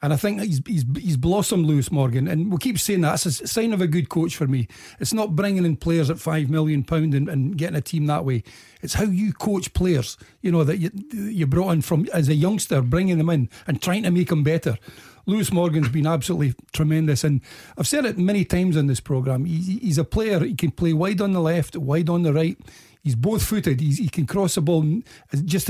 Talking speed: 240 wpm